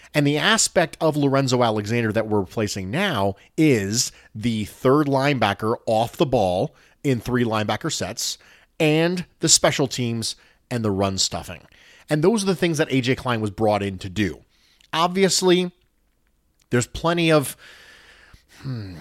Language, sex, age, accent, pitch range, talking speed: English, male, 30-49, American, 105-145 Hz, 150 wpm